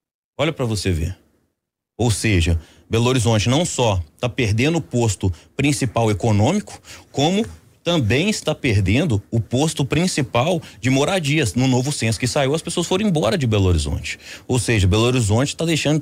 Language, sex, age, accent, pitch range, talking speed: Portuguese, male, 30-49, Brazilian, 105-155 Hz, 160 wpm